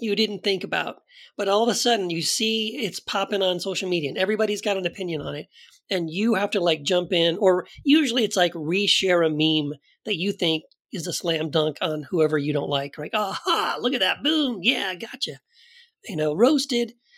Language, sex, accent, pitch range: English, male, American, 160-230 Hz